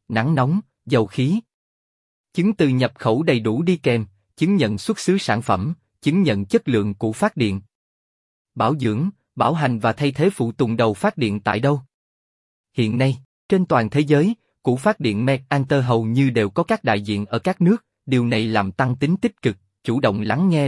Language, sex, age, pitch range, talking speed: Vietnamese, male, 20-39, 110-155 Hz, 205 wpm